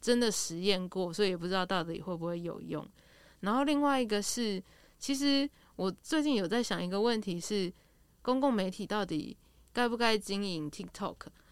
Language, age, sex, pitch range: Chinese, 20-39, female, 180-220 Hz